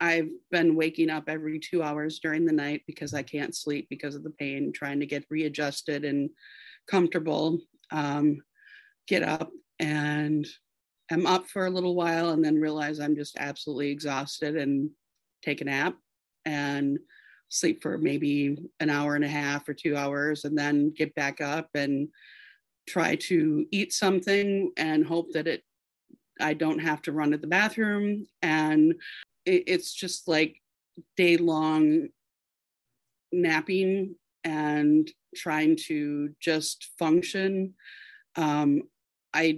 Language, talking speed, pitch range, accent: English, 140 wpm, 150-180 Hz, American